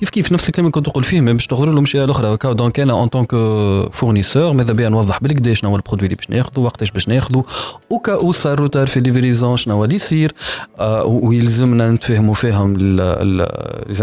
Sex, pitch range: male, 105-140 Hz